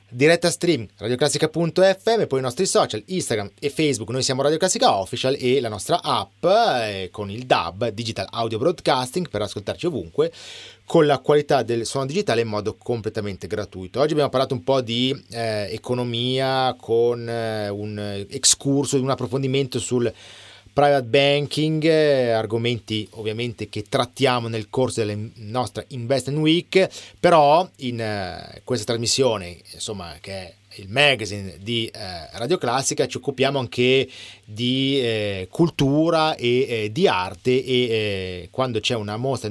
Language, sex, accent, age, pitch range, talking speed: Italian, male, native, 30-49, 110-150 Hz, 140 wpm